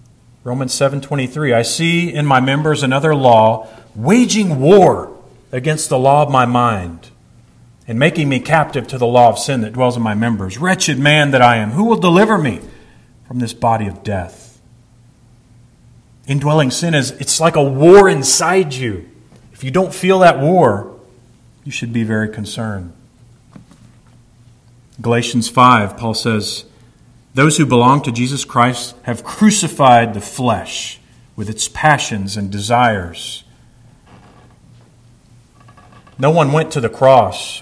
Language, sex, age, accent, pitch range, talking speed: English, male, 40-59, American, 115-145 Hz, 145 wpm